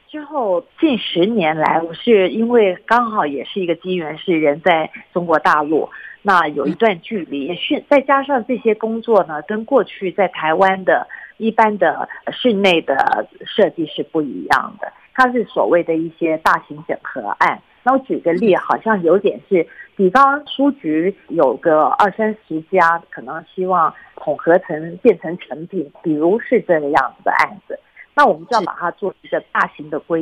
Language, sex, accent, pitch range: Chinese, female, native, 165-245 Hz